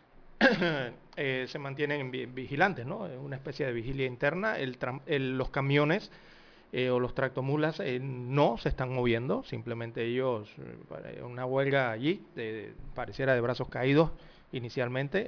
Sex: male